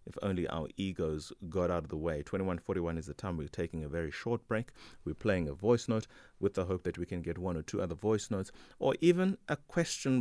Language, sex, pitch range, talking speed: English, male, 80-105 Hz, 240 wpm